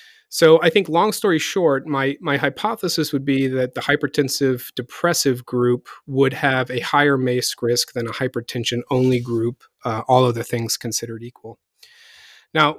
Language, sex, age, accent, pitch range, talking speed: English, male, 40-59, American, 125-160 Hz, 160 wpm